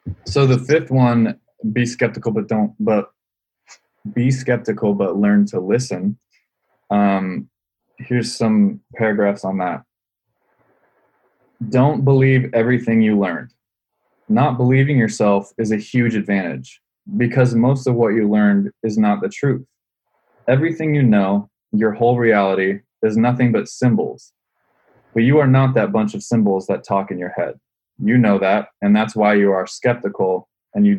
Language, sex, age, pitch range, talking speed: English, male, 20-39, 100-130 Hz, 150 wpm